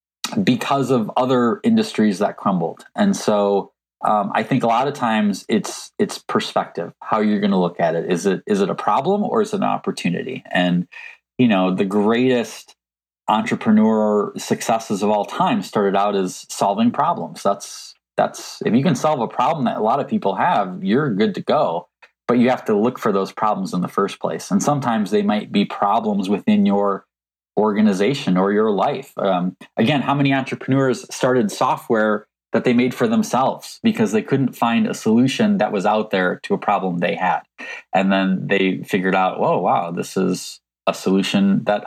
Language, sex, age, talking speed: English, male, 20-39, 190 wpm